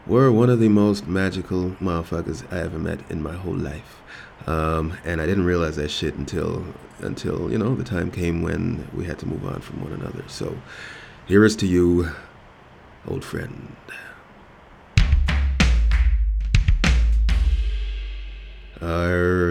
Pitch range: 75-90 Hz